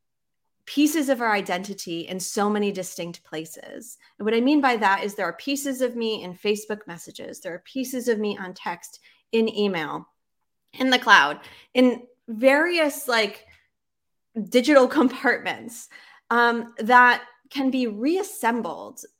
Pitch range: 195-255 Hz